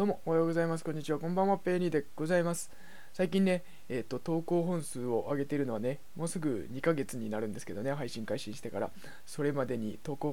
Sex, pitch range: male, 125-175 Hz